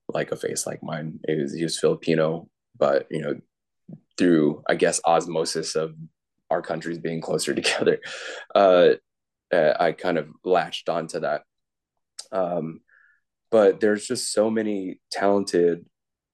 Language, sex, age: English, male, 20-39